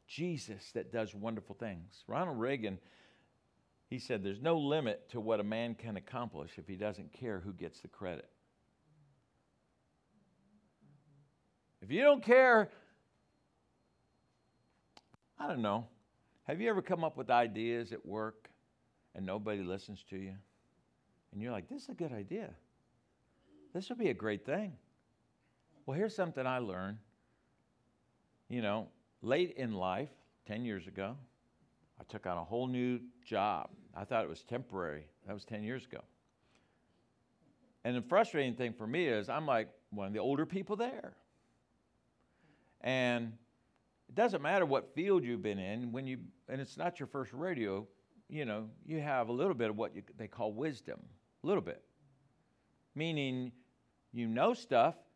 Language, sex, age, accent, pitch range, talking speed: English, male, 60-79, American, 105-145 Hz, 155 wpm